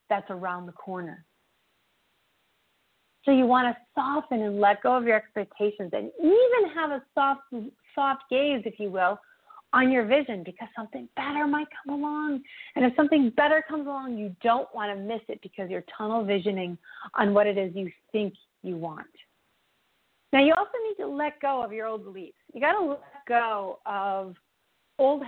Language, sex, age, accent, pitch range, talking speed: English, female, 40-59, American, 220-290 Hz, 180 wpm